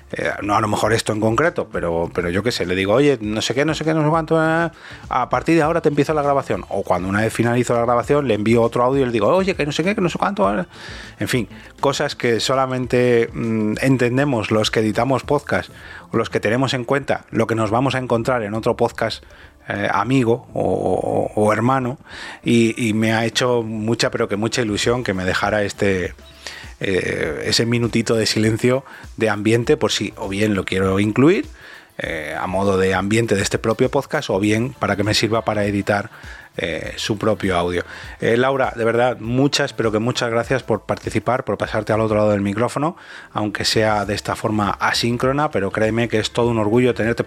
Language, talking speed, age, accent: Spanish, 210 wpm, 30-49, Spanish